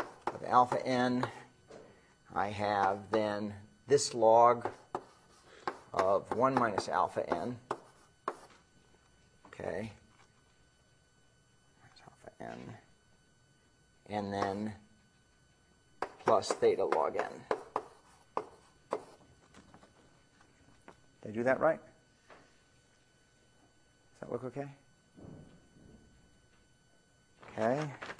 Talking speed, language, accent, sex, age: 70 wpm, English, American, male, 40-59